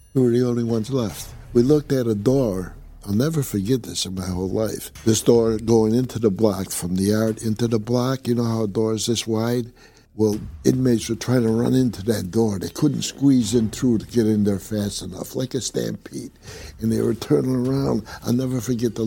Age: 60-79